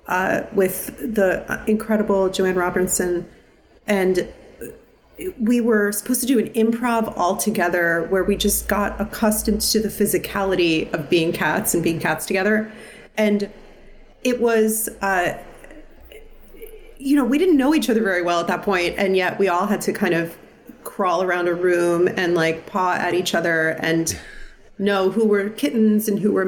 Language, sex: English, female